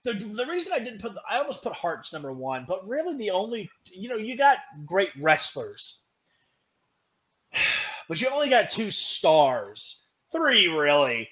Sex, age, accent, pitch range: male, 30-49, American, 135-175 Hz